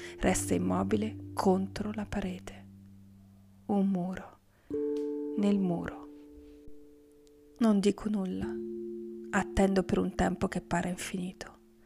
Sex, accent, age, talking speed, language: female, native, 30-49, 95 wpm, Italian